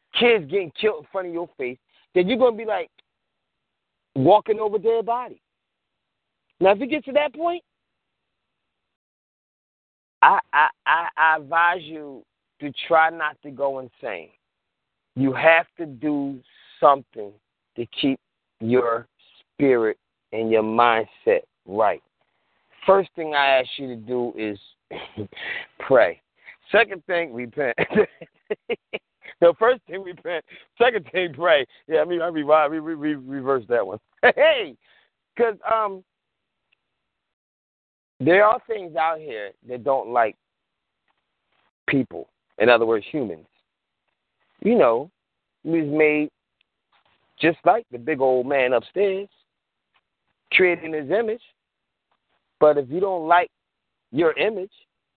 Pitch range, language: 135-195 Hz, English